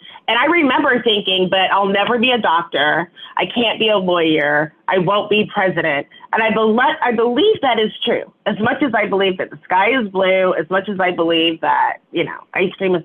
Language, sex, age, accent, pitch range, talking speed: English, female, 30-49, American, 185-250 Hz, 220 wpm